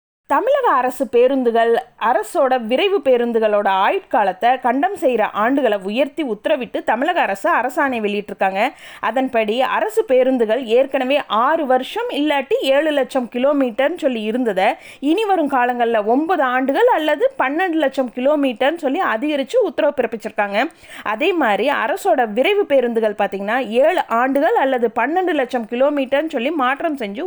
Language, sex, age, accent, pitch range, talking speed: Tamil, female, 20-39, native, 230-305 Hz, 125 wpm